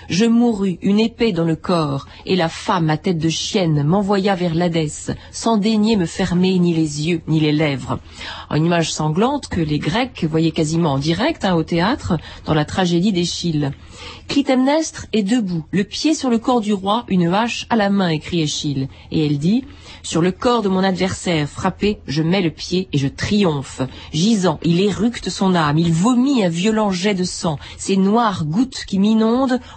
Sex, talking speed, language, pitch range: female, 190 wpm, French, 155-210 Hz